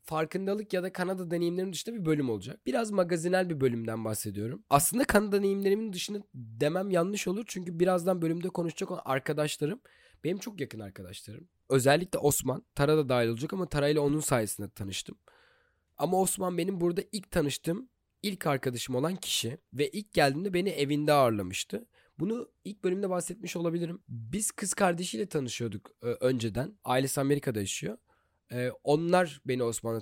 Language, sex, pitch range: Turkish, male, 125-180 Hz